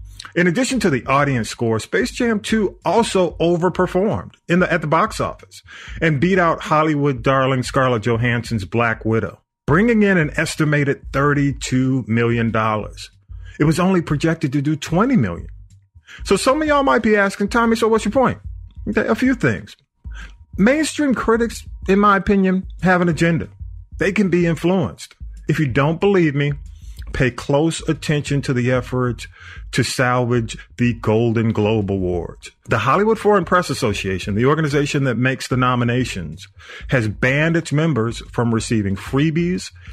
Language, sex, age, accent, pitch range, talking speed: English, male, 40-59, American, 105-175 Hz, 155 wpm